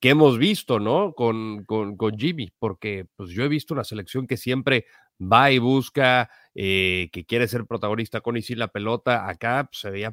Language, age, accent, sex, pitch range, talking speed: English, 40-59, Mexican, male, 110-145 Hz, 200 wpm